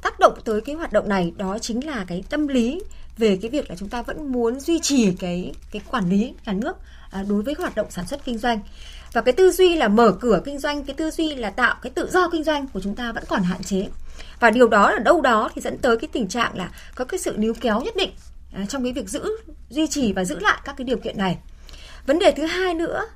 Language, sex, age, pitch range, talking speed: Vietnamese, female, 20-39, 205-295 Hz, 265 wpm